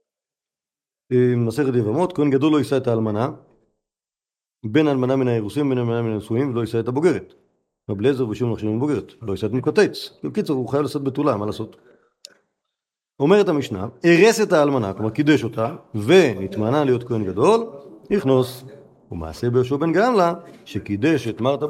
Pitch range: 120-155 Hz